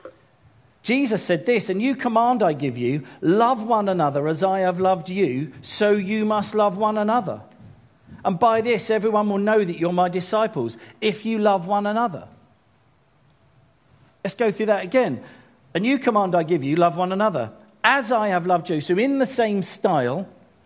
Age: 50-69